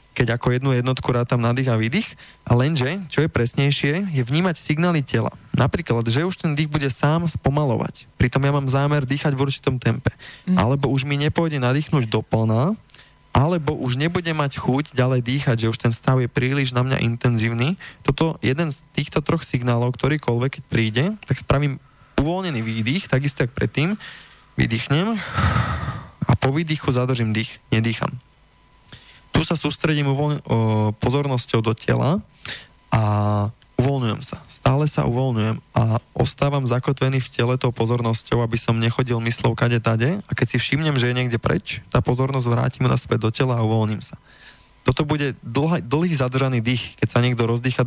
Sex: male